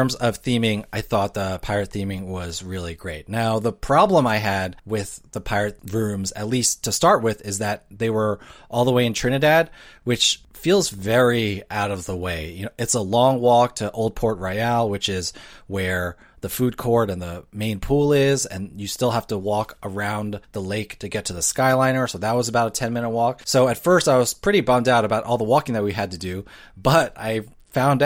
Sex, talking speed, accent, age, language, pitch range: male, 220 wpm, American, 30-49, English, 100-125 Hz